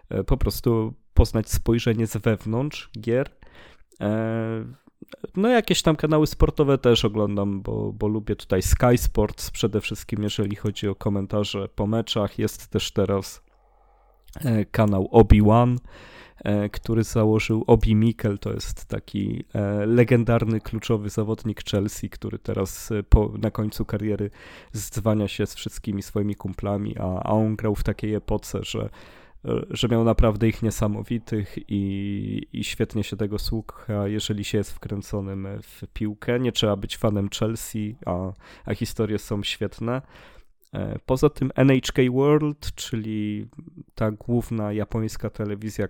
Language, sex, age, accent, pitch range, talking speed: Polish, male, 20-39, native, 105-115 Hz, 130 wpm